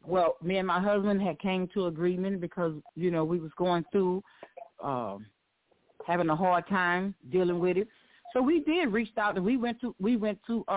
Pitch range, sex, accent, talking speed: 190-260 Hz, female, American, 200 wpm